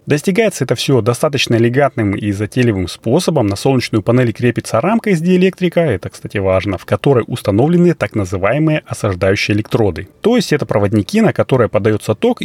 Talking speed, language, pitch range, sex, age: 160 wpm, Russian, 100-140 Hz, male, 30-49